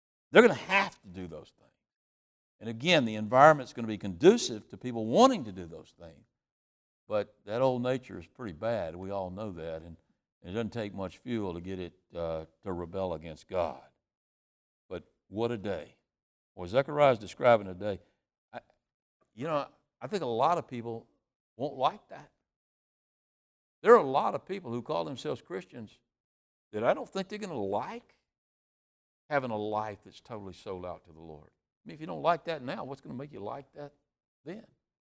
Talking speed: 190 wpm